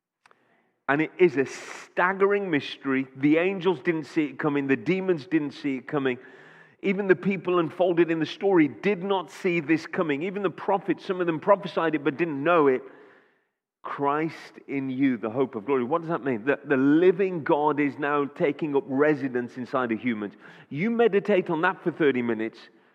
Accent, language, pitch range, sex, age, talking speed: British, English, 130-175 Hz, male, 30-49, 190 wpm